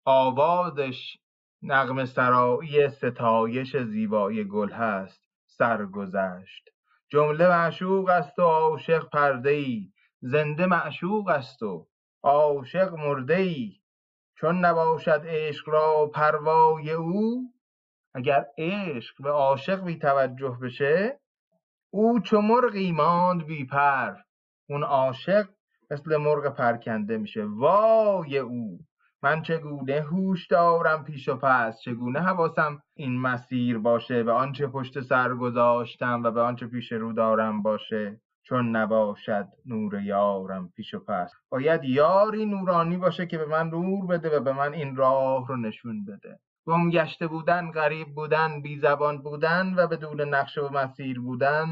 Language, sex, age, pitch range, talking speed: Persian, male, 30-49, 125-170 Hz, 125 wpm